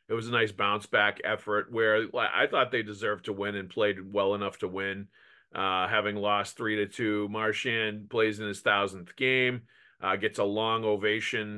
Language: English